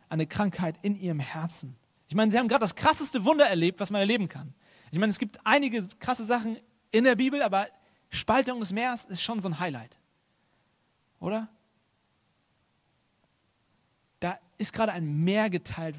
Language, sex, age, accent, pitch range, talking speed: German, male, 40-59, German, 150-205 Hz, 165 wpm